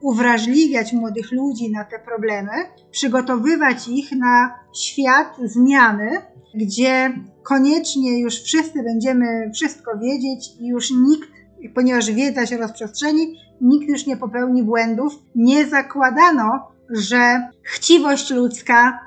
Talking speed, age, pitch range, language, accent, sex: 110 wpm, 20-39, 230-265 Hz, Polish, native, female